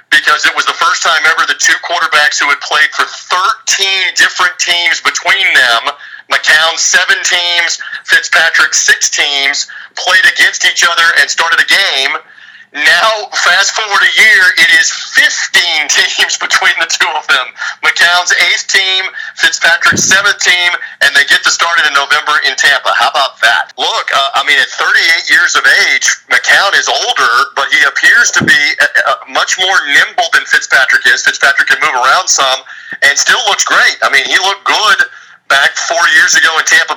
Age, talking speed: 40-59, 175 wpm